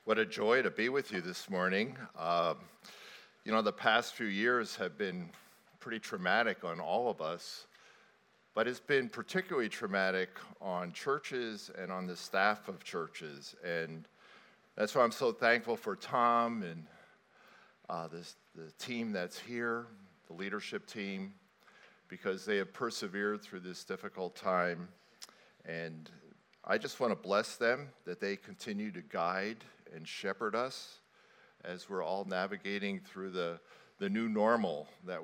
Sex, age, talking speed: male, 50-69, 145 wpm